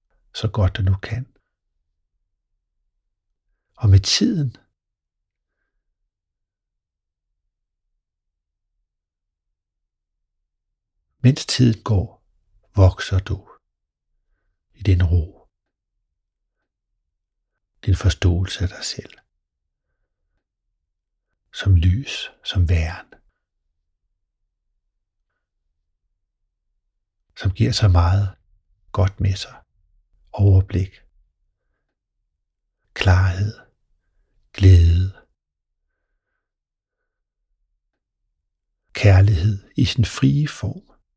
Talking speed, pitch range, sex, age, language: 60 wpm, 85-100 Hz, male, 60-79, Danish